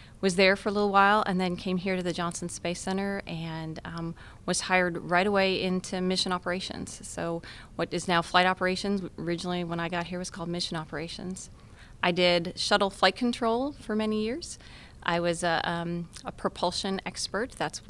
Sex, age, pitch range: female, 30-49, 175-190 Hz